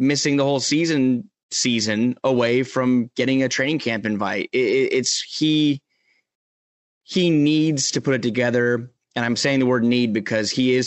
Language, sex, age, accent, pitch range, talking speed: English, male, 20-39, American, 110-135 Hz, 165 wpm